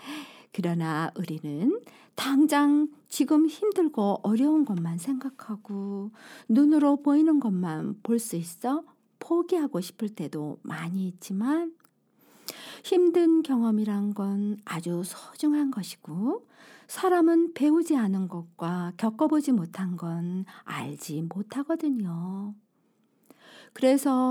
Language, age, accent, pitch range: Korean, 50-69, native, 185-295 Hz